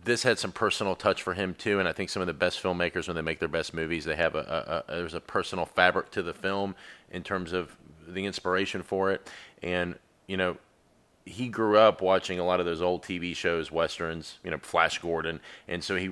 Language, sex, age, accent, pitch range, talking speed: English, male, 30-49, American, 85-95 Hz, 235 wpm